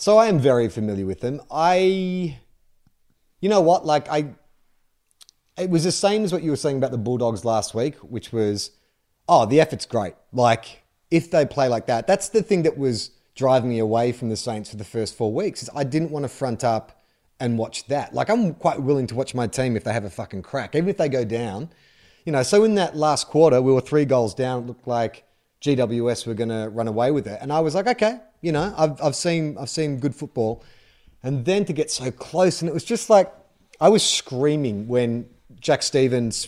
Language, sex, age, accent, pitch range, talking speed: English, male, 30-49, Australian, 120-165 Hz, 225 wpm